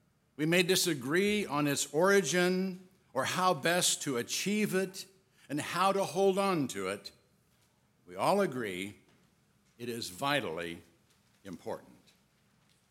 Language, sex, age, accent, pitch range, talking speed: English, male, 60-79, American, 130-195 Hz, 120 wpm